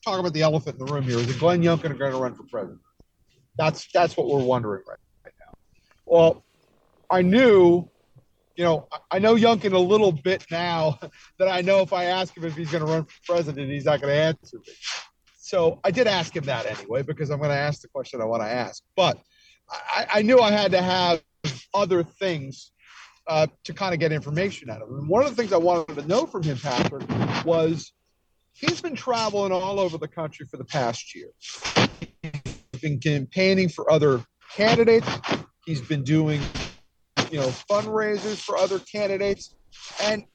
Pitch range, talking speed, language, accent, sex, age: 155-215 Hz, 195 wpm, English, American, male, 40-59